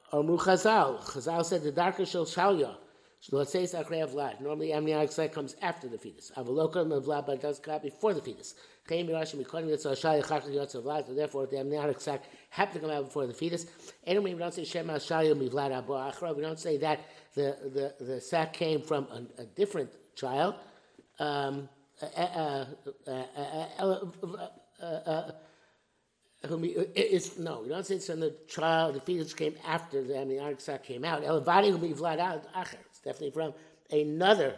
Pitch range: 145-170 Hz